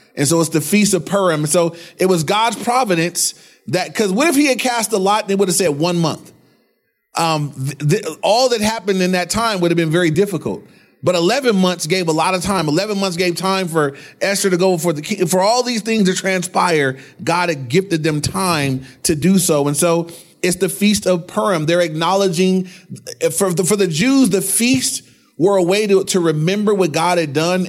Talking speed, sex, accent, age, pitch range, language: 210 wpm, male, American, 30-49, 155-195 Hz, English